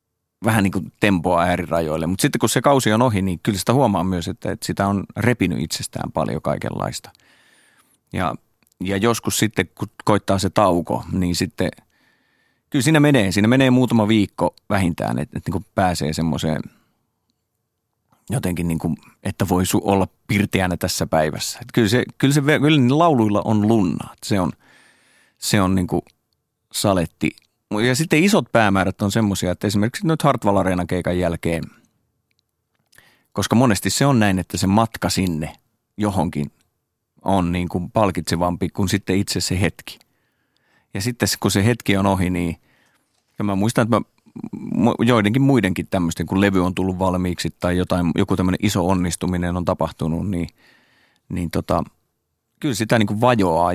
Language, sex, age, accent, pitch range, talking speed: Finnish, male, 30-49, native, 90-110 Hz, 155 wpm